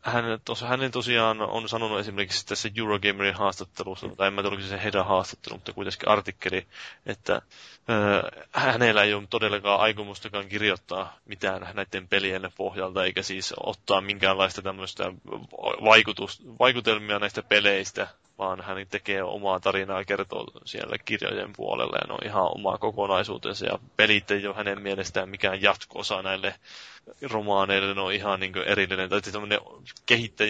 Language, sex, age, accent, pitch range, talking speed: Finnish, male, 20-39, native, 95-110 Hz, 140 wpm